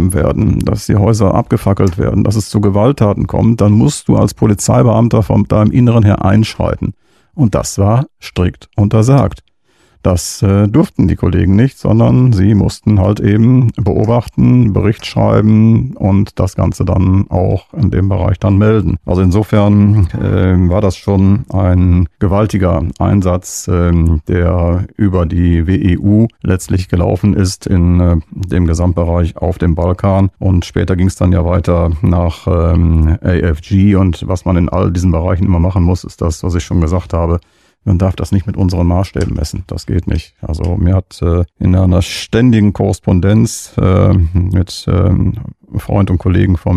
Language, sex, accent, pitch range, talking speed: German, male, German, 90-105 Hz, 165 wpm